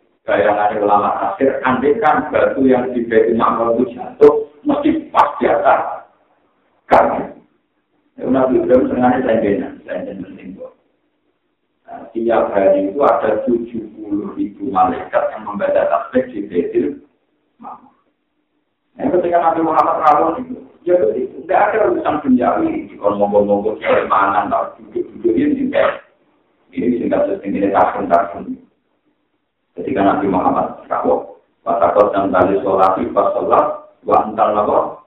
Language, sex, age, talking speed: Indonesian, male, 60-79, 80 wpm